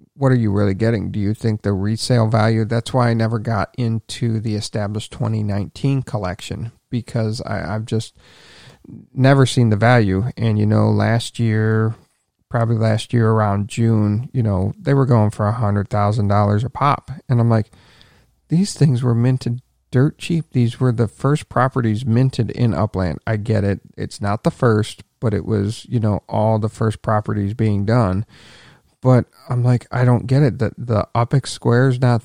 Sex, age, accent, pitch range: male, 40-59, American, 105-125 Hz